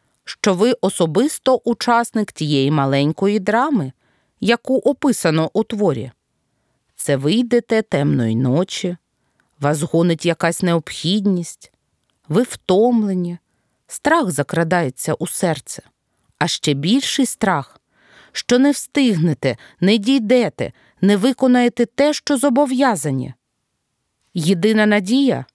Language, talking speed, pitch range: Ukrainian, 95 wpm, 160-260 Hz